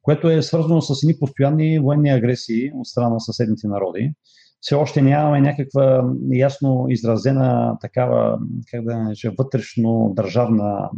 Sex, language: male, Bulgarian